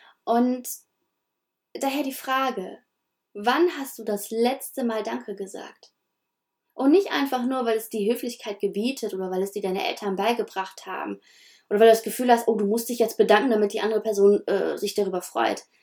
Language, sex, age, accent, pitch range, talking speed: German, female, 20-39, German, 205-245 Hz, 185 wpm